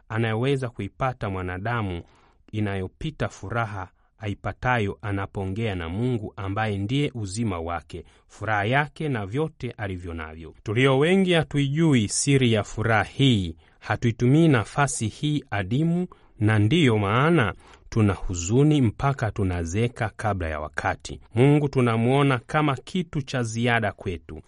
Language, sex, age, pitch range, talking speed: Swahili, male, 30-49, 95-135 Hz, 110 wpm